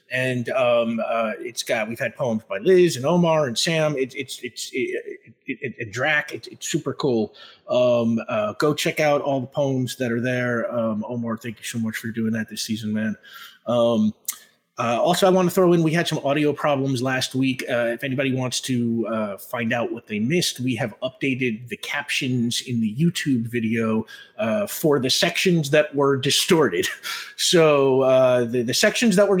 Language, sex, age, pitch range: English, male, 30-49, 120-170 Hz